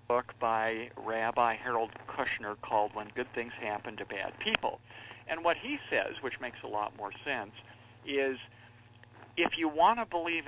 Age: 60-79